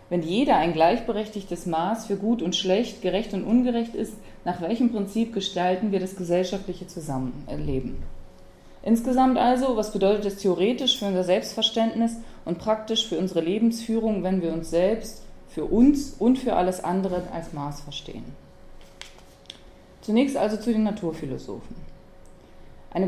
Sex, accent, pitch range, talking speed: female, German, 165-215 Hz, 140 wpm